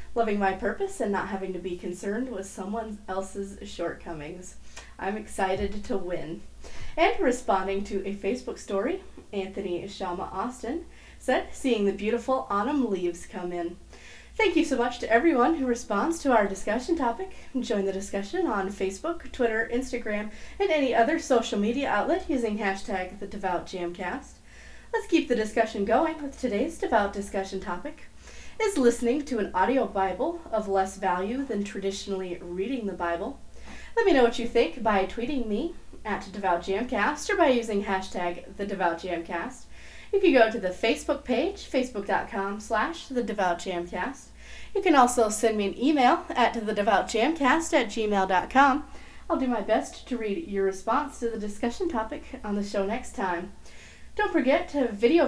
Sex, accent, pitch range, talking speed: female, American, 195-260 Hz, 155 wpm